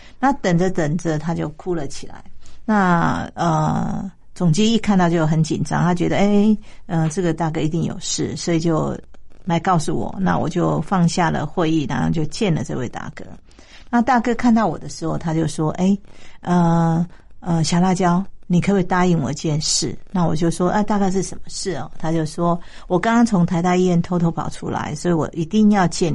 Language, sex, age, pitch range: Chinese, female, 50-69, 160-190 Hz